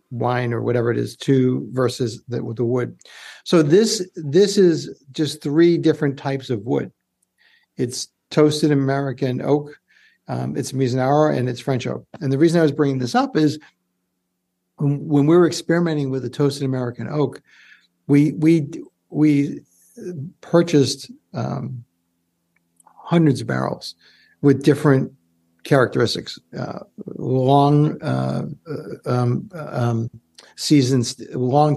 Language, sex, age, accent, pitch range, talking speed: English, male, 60-79, American, 125-155 Hz, 130 wpm